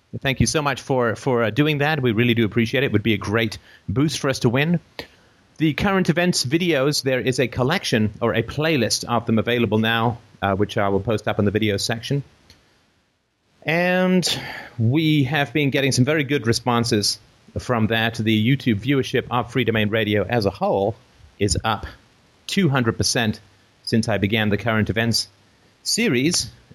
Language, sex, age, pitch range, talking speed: English, male, 40-59, 105-130 Hz, 180 wpm